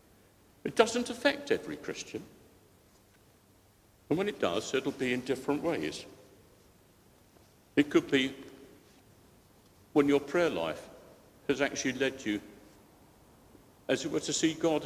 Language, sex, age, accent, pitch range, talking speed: English, male, 60-79, British, 105-145 Hz, 130 wpm